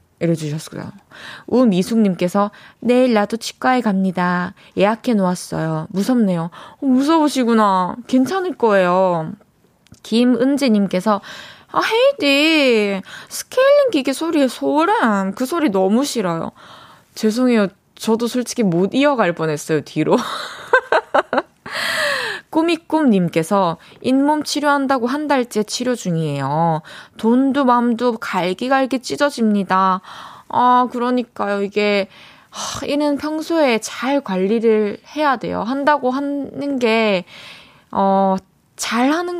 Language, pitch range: Korean, 190-275 Hz